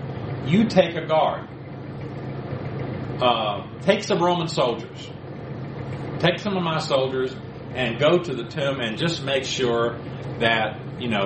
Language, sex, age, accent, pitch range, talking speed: English, male, 50-69, American, 125-150 Hz, 140 wpm